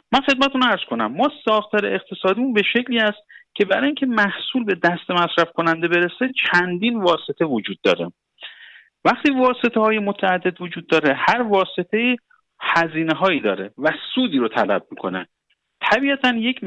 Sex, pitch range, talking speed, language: male, 155-225 Hz, 150 wpm, Persian